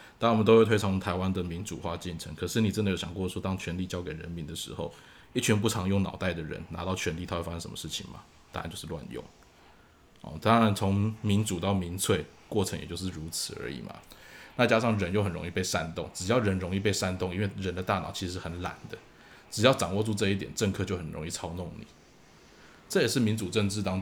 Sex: male